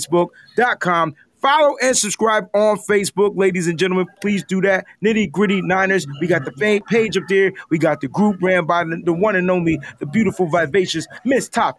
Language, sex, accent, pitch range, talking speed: English, male, American, 165-225 Hz, 185 wpm